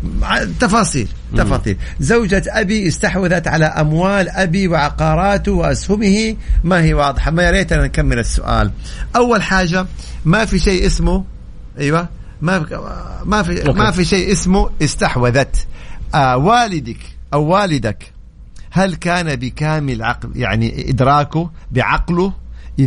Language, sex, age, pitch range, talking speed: Arabic, male, 50-69, 135-180 Hz, 120 wpm